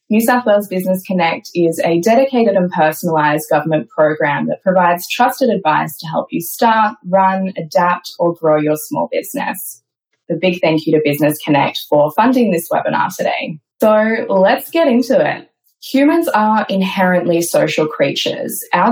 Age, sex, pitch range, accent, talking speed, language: 10-29, female, 165-230 Hz, Australian, 160 wpm, English